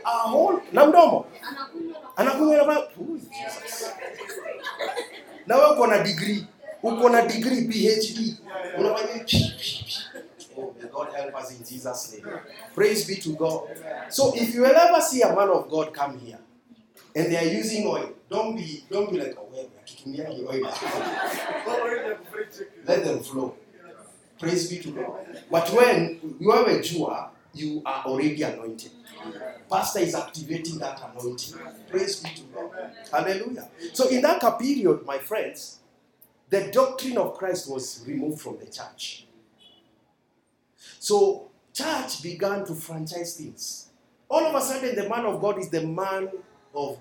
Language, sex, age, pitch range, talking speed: English, male, 30-49, 160-270 Hz, 140 wpm